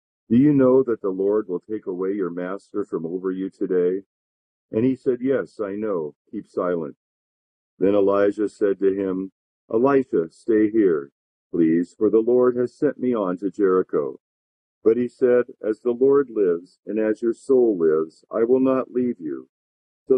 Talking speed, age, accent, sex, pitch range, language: 175 wpm, 50-69, American, male, 90-120 Hz, English